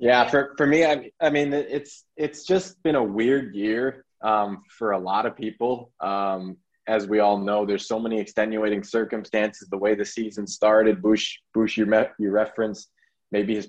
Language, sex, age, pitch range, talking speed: English, male, 20-39, 105-115 Hz, 185 wpm